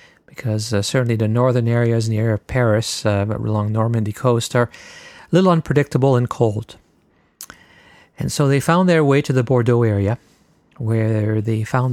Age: 50-69